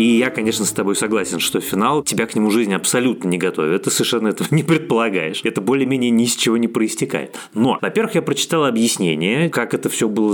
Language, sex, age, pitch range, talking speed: Russian, male, 20-39, 100-140 Hz, 210 wpm